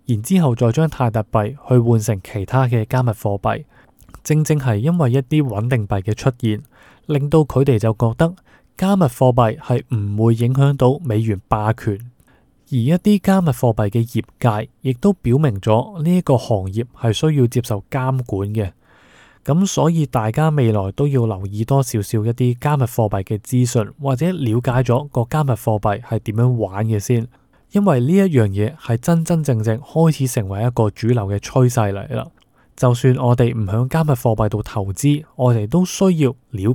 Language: Chinese